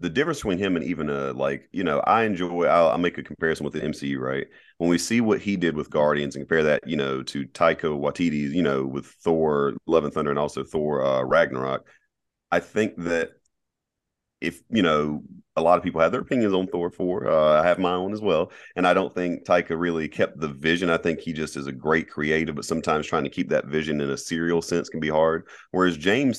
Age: 30-49